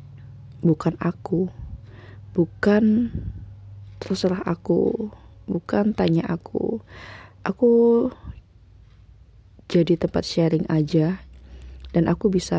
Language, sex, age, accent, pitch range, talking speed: Indonesian, female, 20-39, native, 105-170 Hz, 75 wpm